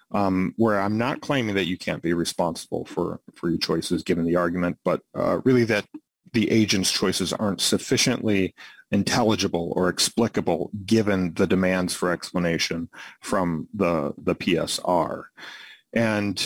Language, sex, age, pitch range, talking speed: Persian, male, 40-59, 90-110 Hz, 140 wpm